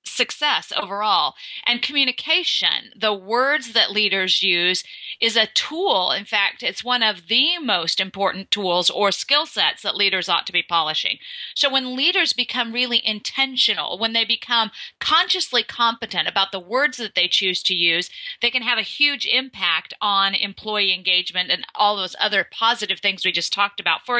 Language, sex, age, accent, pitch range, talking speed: English, female, 30-49, American, 200-255 Hz, 170 wpm